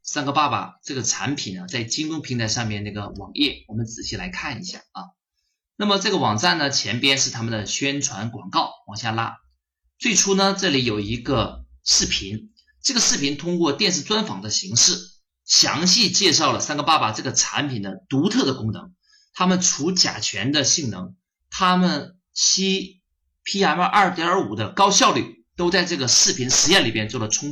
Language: Chinese